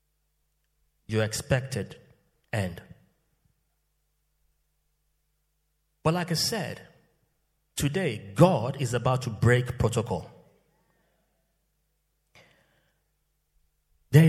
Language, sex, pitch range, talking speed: English, male, 120-160 Hz, 65 wpm